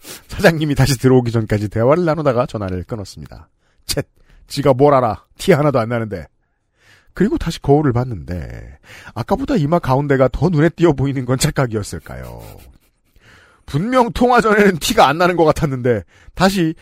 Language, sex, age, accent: Korean, male, 40-59, native